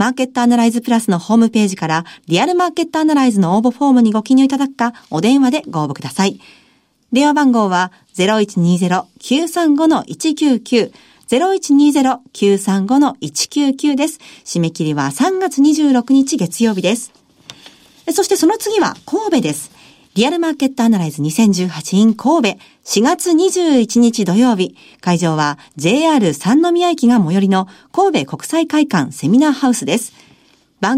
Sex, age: female, 50-69